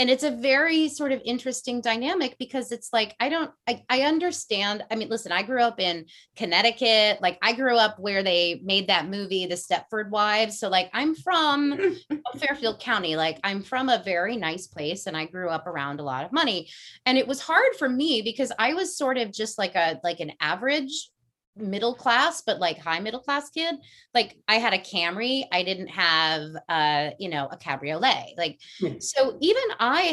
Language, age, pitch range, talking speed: English, 30-49, 180-260 Hz, 200 wpm